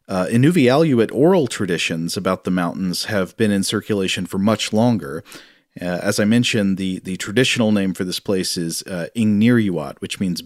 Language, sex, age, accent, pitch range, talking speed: English, male, 40-59, American, 95-120 Hz, 170 wpm